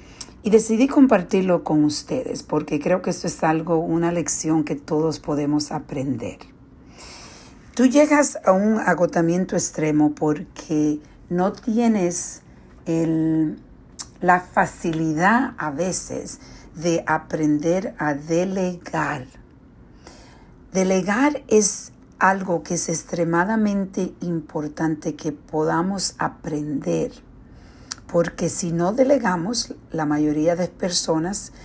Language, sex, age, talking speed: Spanish, female, 50-69, 100 wpm